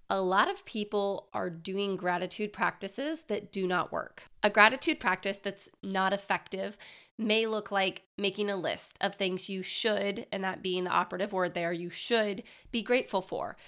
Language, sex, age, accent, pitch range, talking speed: English, female, 20-39, American, 195-250 Hz, 175 wpm